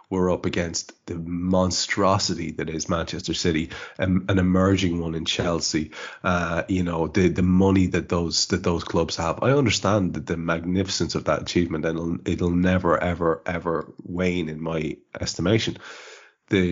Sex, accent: male, Irish